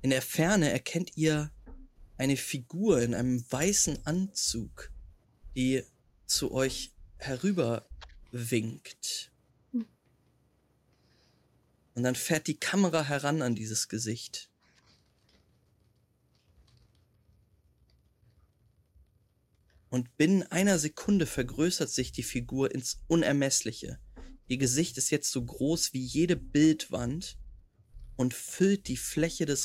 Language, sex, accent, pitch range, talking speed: German, male, German, 100-155 Hz, 95 wpm